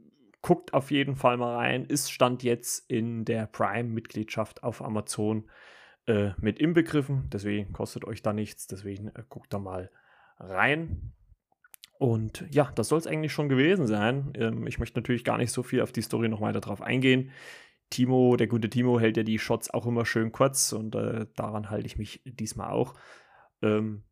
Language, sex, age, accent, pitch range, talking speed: German, male, 30-49, German, 110-135 Hz, 180 wpm